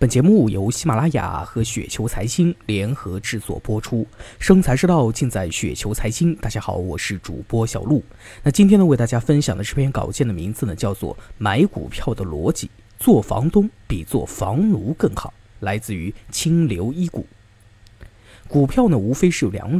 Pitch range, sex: 105-155 Hz, male